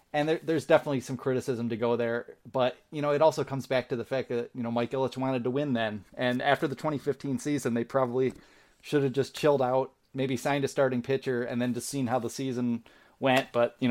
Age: 30-49